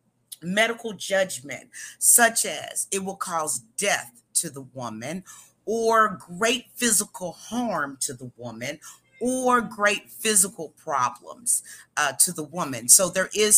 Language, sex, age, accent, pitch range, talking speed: English, female, 40-59, American, 165-230 Hz, 130 wpm